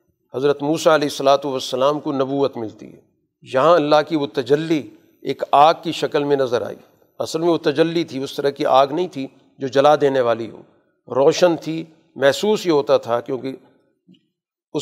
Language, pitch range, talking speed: Urdu, 135-160 Hz, 180 wpm